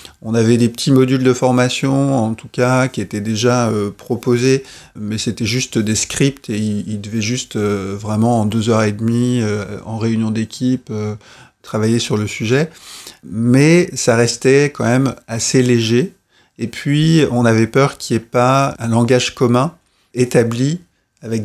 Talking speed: 175 wpm